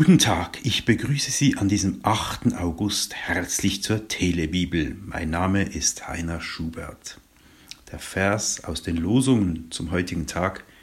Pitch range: 85-120 Hz